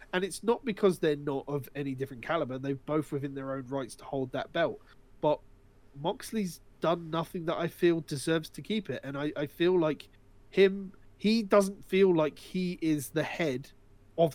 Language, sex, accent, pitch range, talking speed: English, male, British, 130-170 Hz, 190 wpm